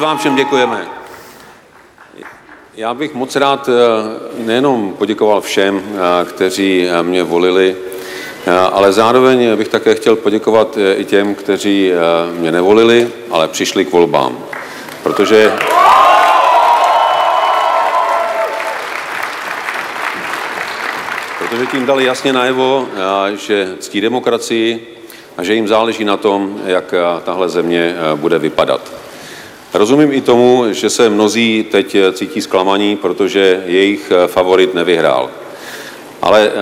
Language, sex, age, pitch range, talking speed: Slovak, male, 40-59, 95-115 Hz, 100 wpm